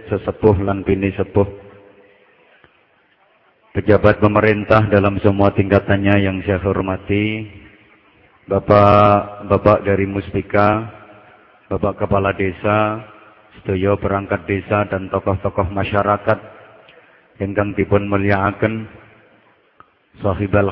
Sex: male